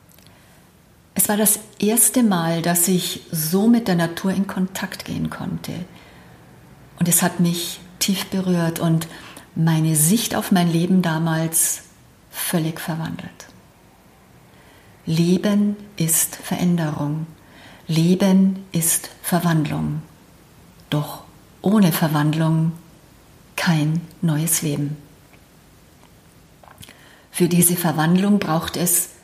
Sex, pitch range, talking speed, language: female, 160-195 Hz, 95 wpm, German